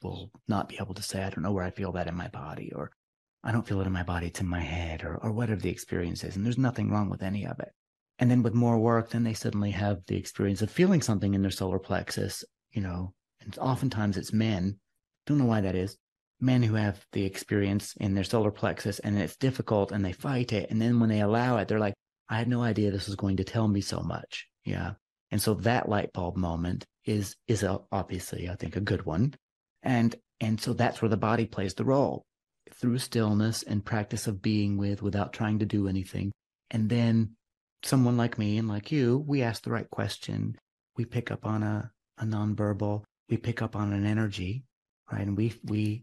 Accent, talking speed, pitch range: American, 230 wpm, 100-115 Hz